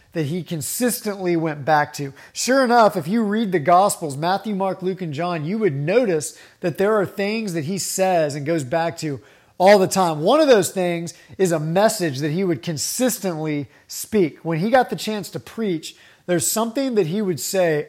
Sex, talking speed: male, 200 wpm